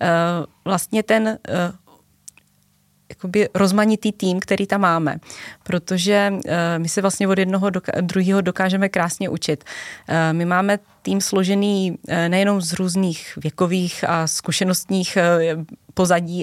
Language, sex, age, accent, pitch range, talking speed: Czech, female, 30-49, native, 170-195 Hz, 105 wpm